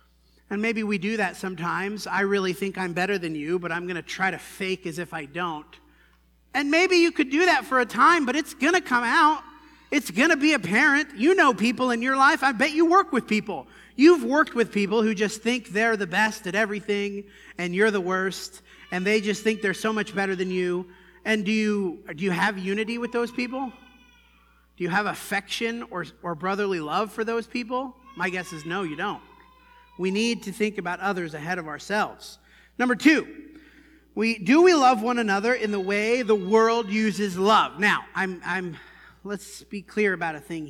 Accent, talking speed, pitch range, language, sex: American, 210 wpm, 180-240 Hz, English, male